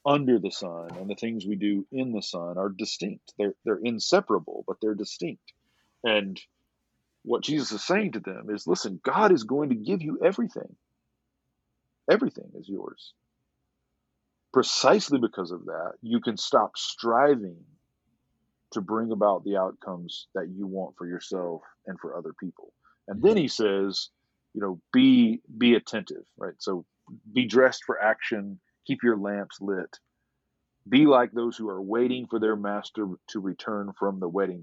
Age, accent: 40-59, American